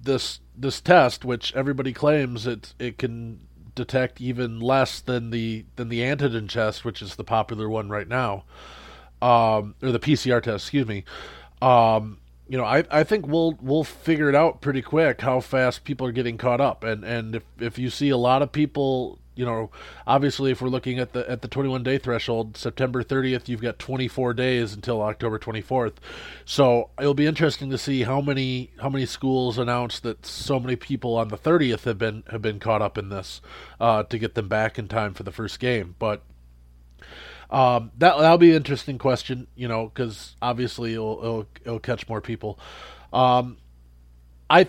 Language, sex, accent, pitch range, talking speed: English, male, American, 110-130 Hz, 190 wpm